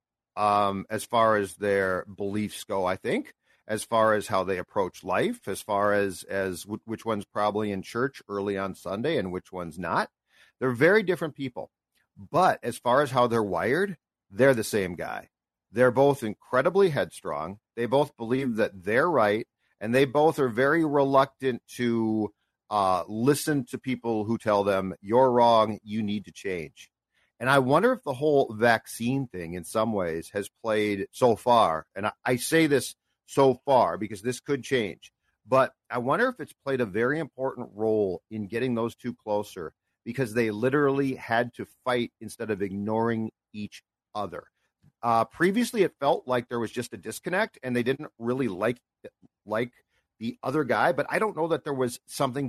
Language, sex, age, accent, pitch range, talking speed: English, male, 50-69, American, 105-135 Hz, 180 wpm